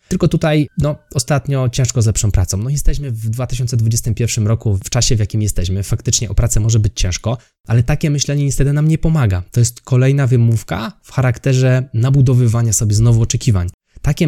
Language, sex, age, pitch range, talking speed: Polish, male, 20-39, 105-130 Hz, 175 wpm